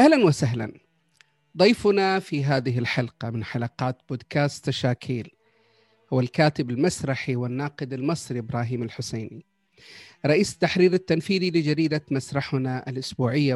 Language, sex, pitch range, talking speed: Arabic, male, 130-160 Hz, 100 wpm